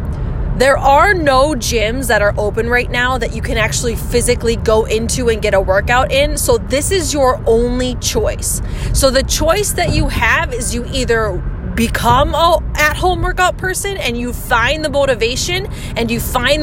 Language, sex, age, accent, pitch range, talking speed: English, female, 20-39, American, 255-360 Hz, 175 wpm